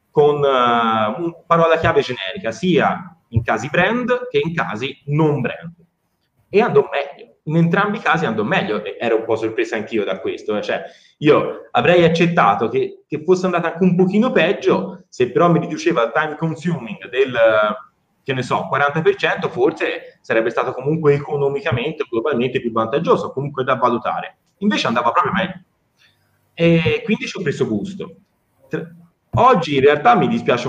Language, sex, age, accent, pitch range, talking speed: Italian, male, 30-49, native, 150-215 Hz, 165 wpm